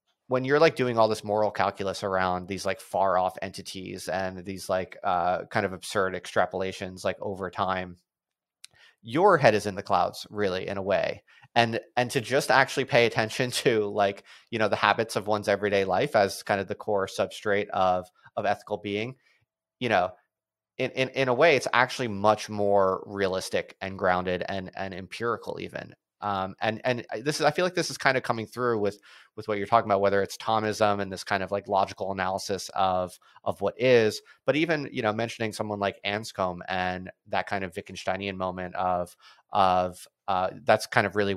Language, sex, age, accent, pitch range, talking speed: English, male, 30-49, American, 95-120 Hz, 195 wpm